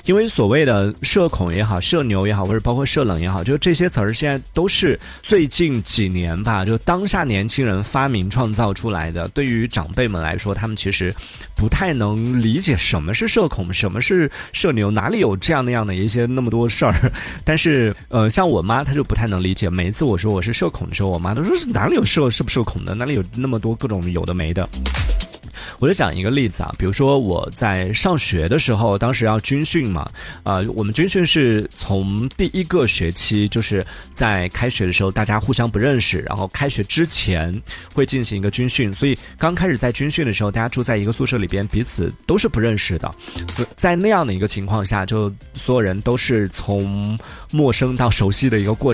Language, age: Chinese, 30-49